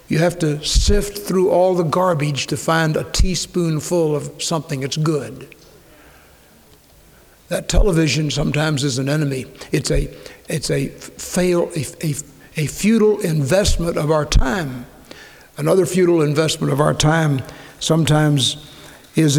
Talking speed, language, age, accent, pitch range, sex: 135 wpm, English, 60-79, American, 150-175 Hz, male